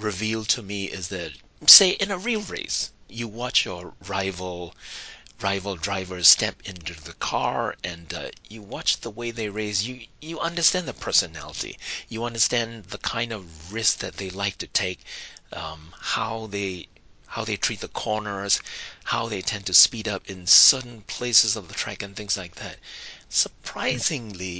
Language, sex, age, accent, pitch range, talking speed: English, male, 40-59, American, 95-115 Hz, 170 wpm